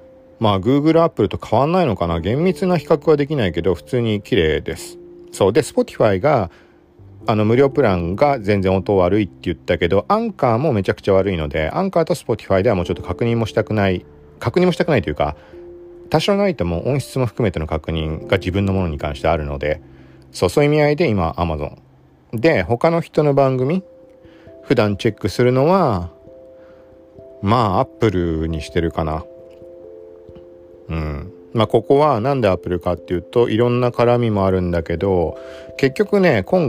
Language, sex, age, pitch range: Japanese, male, 40-59, 85-140 Hz